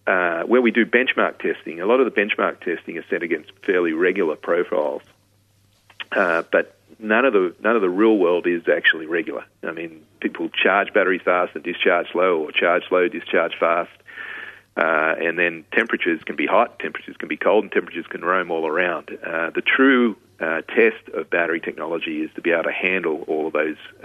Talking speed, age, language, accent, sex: 195 wpm, 40-59, English, Australian, male